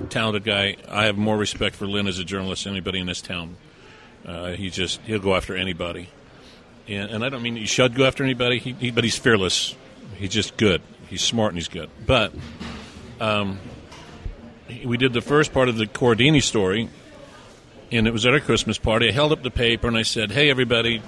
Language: English